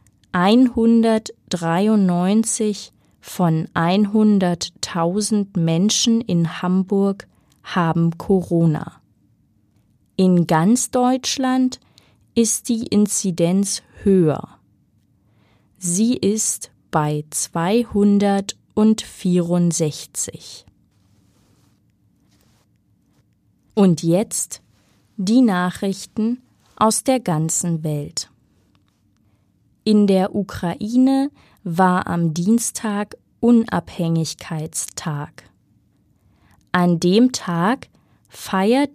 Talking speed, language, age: 60 wpm, German, 20-39